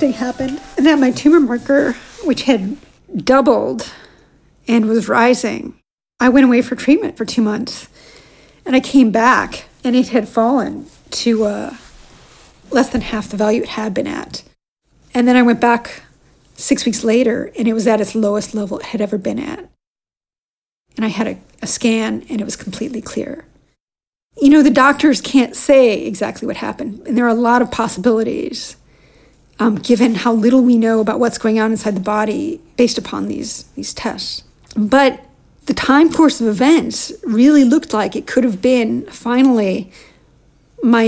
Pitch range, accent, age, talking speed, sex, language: 225-270 Hz, American, 40-59, 175 wpm, female, English